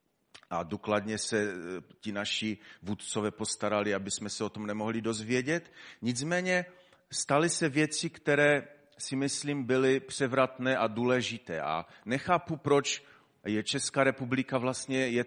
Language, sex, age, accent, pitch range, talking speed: Czech, male, 40-59, native, 95-120 Hz, 130 wpm